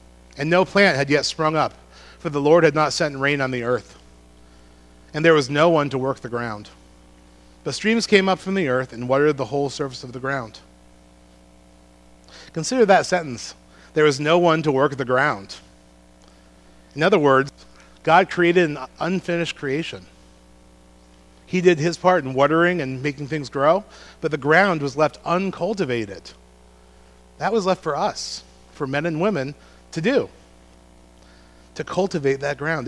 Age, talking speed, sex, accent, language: 40-59, 165 wpm, male, American, English